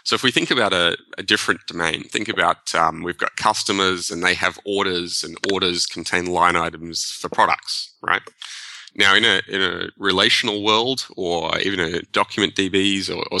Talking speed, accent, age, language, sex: 180 wpm, Australian, 20-39, English, male